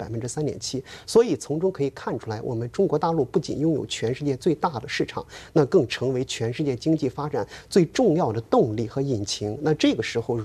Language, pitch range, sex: Chinese, 120-170 Hz, male